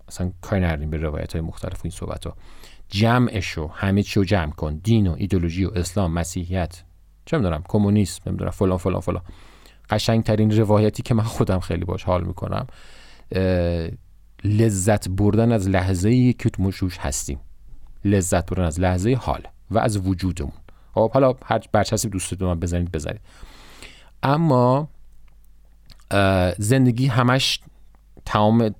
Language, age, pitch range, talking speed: Persian, 40-59, 85-115 Hz, 130 wpm